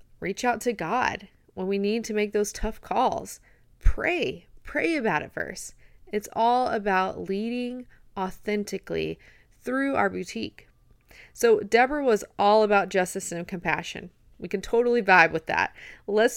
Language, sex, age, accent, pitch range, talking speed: English, female, 30-49, American, 185-260 Hz, 145 wpm